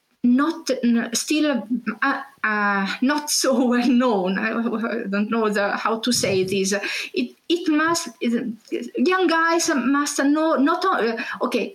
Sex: female